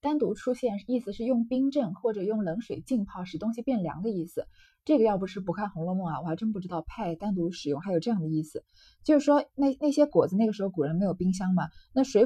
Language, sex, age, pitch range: Chinese, female, 20-39, 185-260 Hz